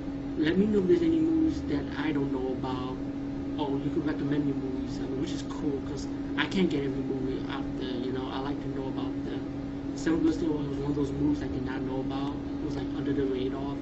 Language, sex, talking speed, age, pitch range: English, male, 245 wpm, 30-49, 135-140 Hz